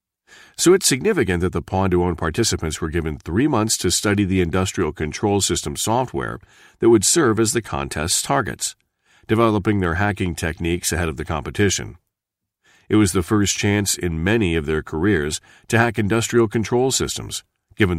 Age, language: 40-59, English